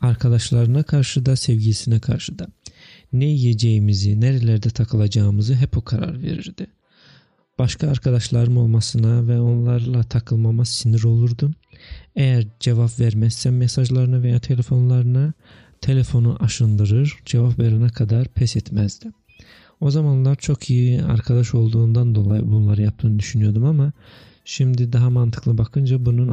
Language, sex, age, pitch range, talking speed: Turkish, male, 40-59, 110-130 Hz, 115 wpm